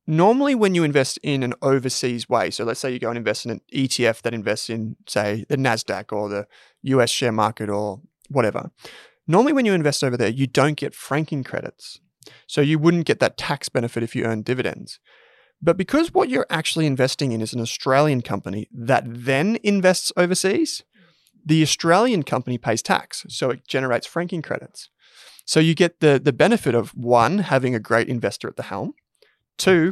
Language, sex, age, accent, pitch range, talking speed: English, male, 20-39, Australian, 120-165 Hz, 190 wpm